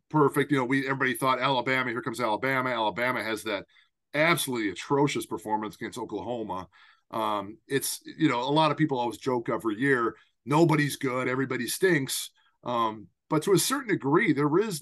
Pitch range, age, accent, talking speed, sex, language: 115-150 Hz, 40-59, American, 170 wpm, male, English